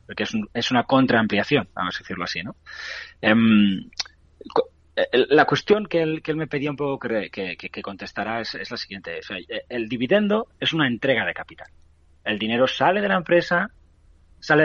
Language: Spanish